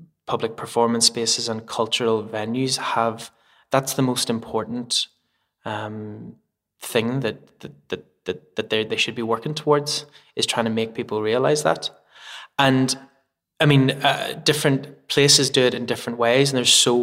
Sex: male